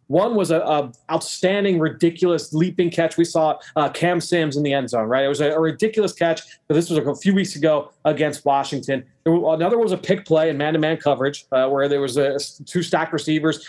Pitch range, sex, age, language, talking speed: 145-180 Hz, male, 30-49, English, 225 wpm